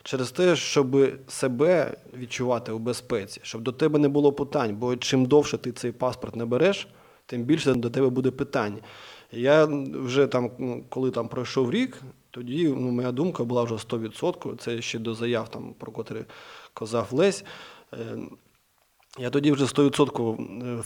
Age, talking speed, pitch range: 20-39, 155 wpm, 115-135 Hz